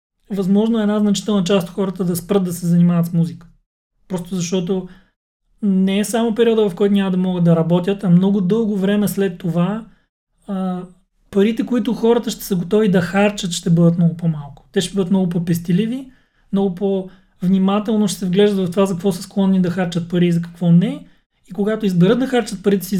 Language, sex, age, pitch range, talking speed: Bulgarian, male, 30-49, 175-210 Hz, 200 wpm